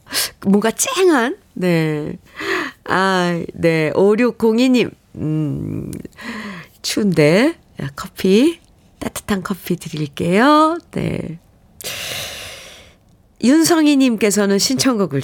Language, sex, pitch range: Korean, female, 160-225 Hz